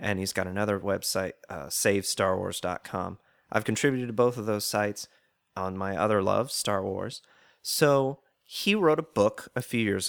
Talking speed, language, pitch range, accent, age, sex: 165 wpm, English, 95-120 Hz, American, 30-49, male